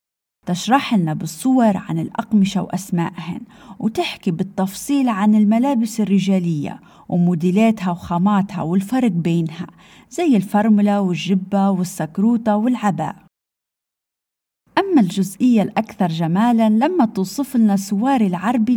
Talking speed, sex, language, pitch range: 95 wpm, female, Arabic, 180-240 Hz